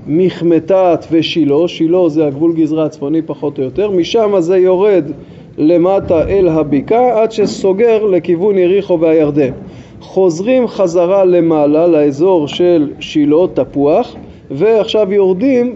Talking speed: 115 wpm